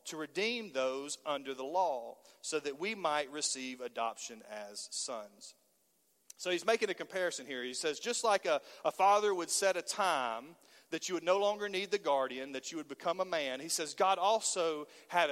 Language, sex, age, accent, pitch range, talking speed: English, male, 40-59, American, 160-215 Hz, 195 wpm